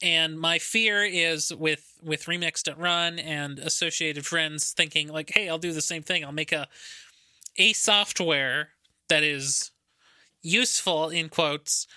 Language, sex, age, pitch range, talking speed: English, male, 20-39, 155-185 Hz, 150 wpm